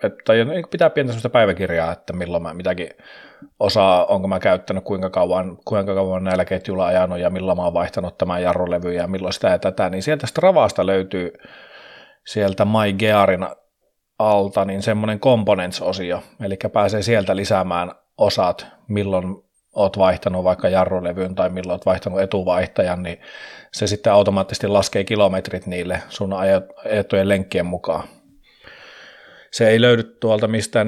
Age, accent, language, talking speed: 30-49, native, Finnish, 145 wpm